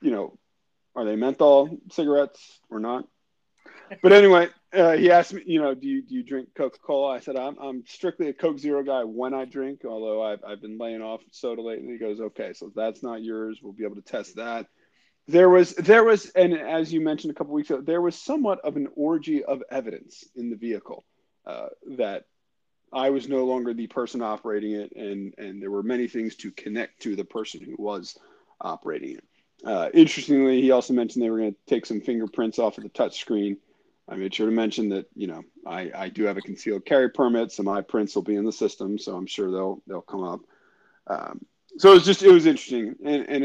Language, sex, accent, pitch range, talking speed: English, male, American, 115-175 Hz, 220 wpm